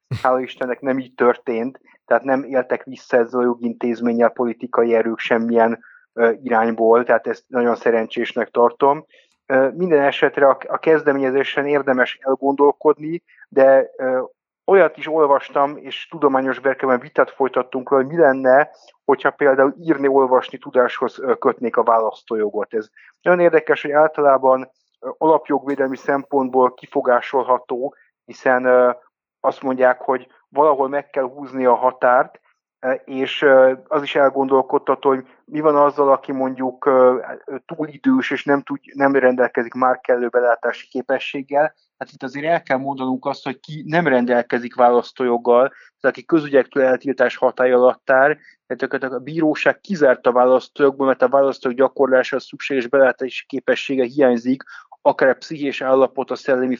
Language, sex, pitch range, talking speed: Hungarian, male, 125-140 Hz, 130 wpm